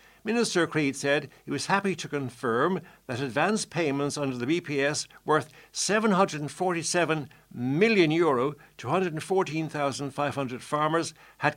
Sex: male